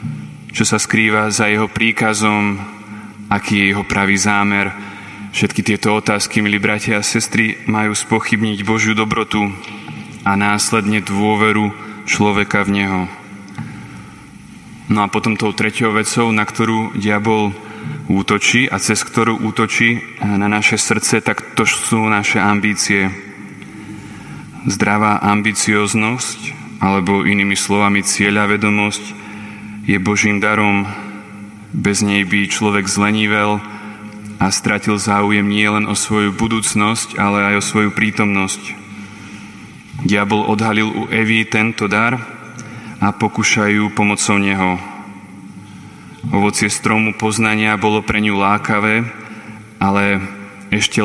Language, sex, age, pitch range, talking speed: Slovak, male, 20-39, 100-110 Hz, 115 wpm